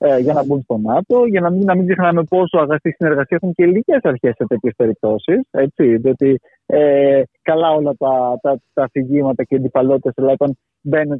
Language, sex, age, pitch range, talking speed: Greek, male, 30-49, 130-175 Hz, 175 wpm